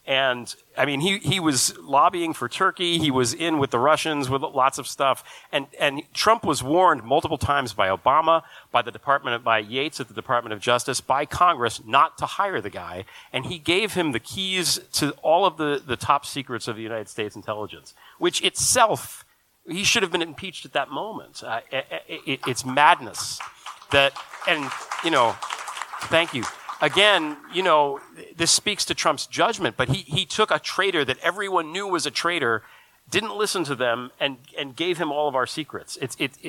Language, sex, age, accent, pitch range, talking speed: English, male, 40-59, American, 120-160 Hz, 195 wpm